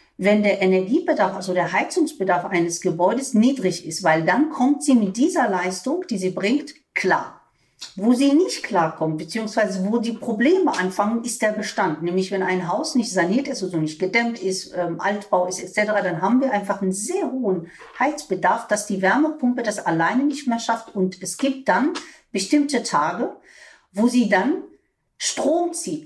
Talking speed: 170 wpm